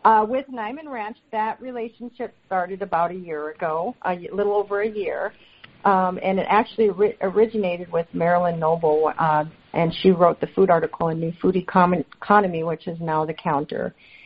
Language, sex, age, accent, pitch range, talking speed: English, female, 50-69, American, 170-205 Hz, 175 wpm